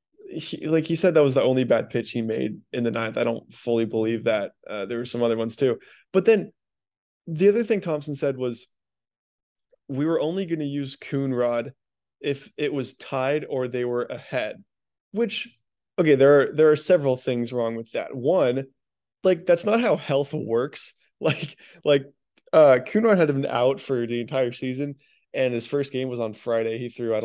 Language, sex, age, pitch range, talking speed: English, male, 20-39, 120-160 Hz, 200 wpm